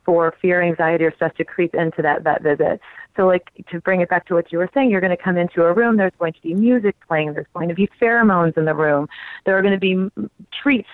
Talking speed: 275 wpm